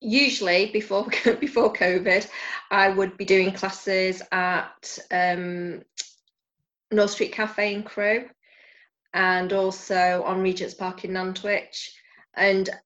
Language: English